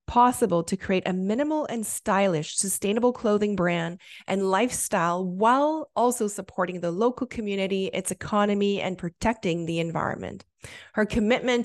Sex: female